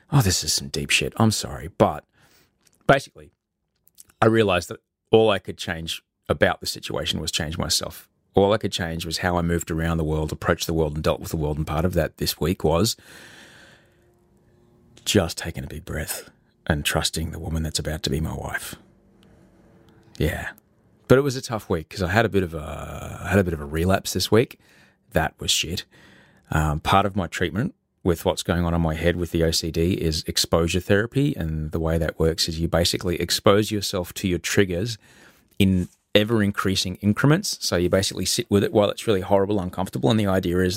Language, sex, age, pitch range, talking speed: English, male, 30-49, 80-100 Hz, 195 wpm